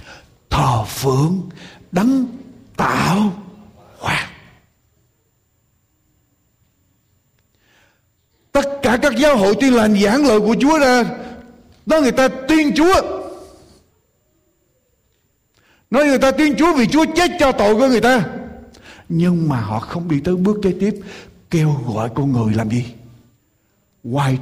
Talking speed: 125 wpm